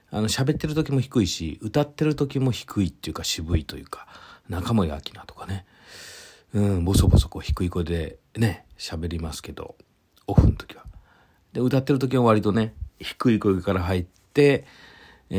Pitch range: 85-110 Hz